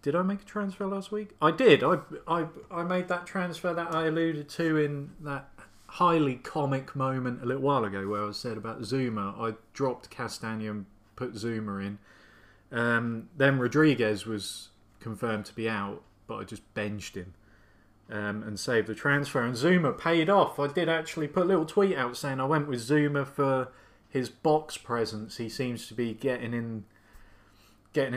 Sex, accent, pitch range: male, British, 110-145 Hz